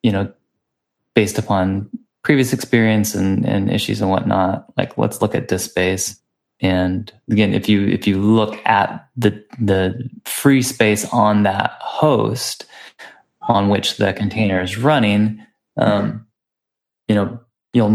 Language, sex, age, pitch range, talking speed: English, male, 20-39, 100-125 Hz, 140 wpm